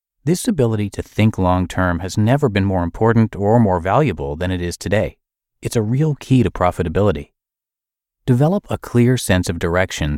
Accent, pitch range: American, 85-120 Hz